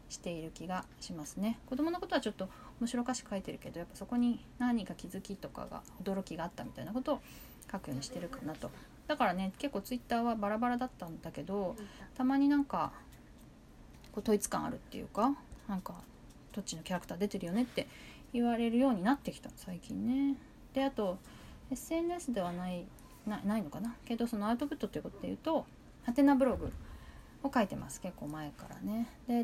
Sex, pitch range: female, 195-255 Hz